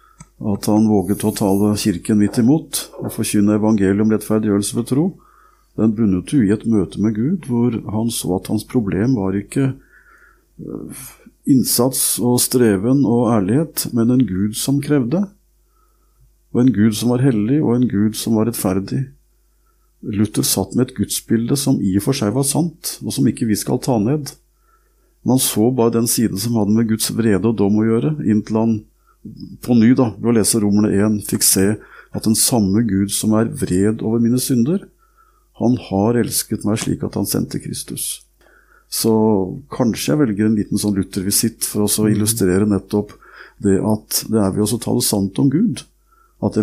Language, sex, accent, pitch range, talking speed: English, male, Norwegian, 105-125 Hz, 170 wpm